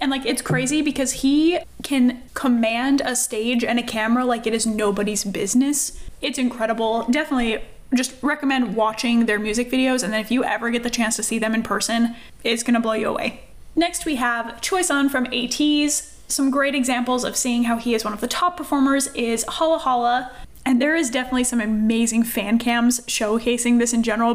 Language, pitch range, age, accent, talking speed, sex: English, 230-275 Hz, 10-29, American, 195 wpm, female